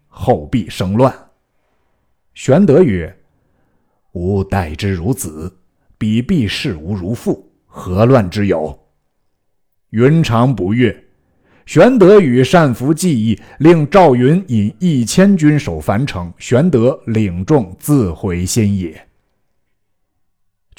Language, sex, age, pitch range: Chinese, male, 50-69, 95-130 Hz